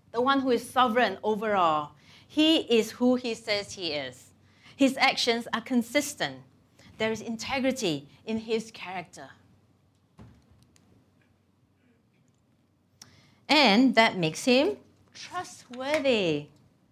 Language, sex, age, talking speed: English, female, 30-49, 100 wpm